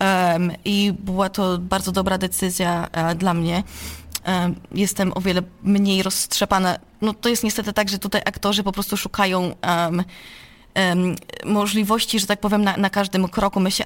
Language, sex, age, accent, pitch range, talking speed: Polish, female, 20-39, native, 185-225 Hz, 145 wpm